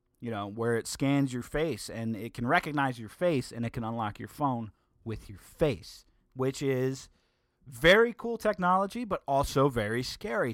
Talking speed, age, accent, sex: 175 wpm, 30-49, American, male